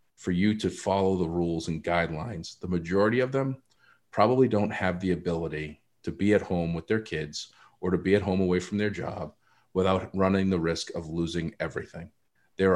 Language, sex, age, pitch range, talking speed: English, male, 40-59, 85-105 Hz, 195 wpm